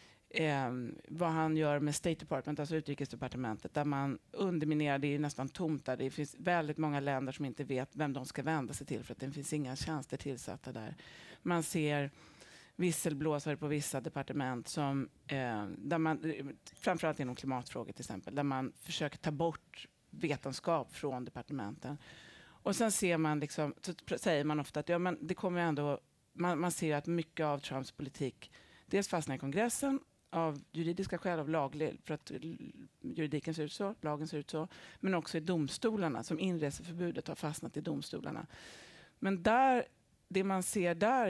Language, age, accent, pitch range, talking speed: Swedish, 30-49, native, 140-175 Hz, 175 wpm